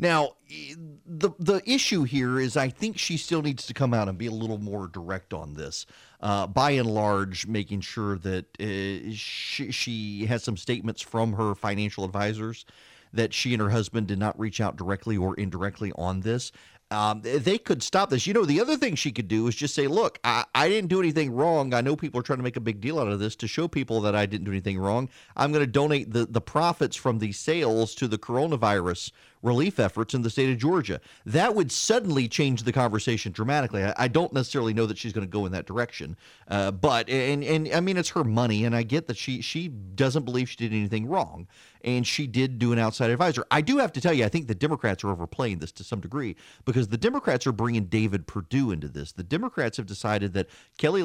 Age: 40-59